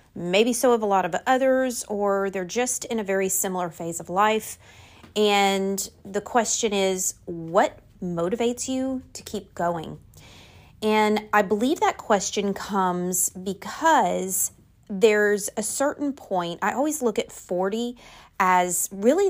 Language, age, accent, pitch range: English, 30-49, American, 185-240 Hz